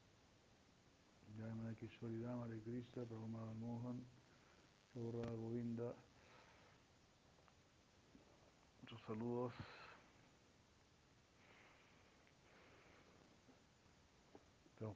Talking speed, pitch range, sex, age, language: 45 wpm, 105-125 Hz, male, 60-79, Spanish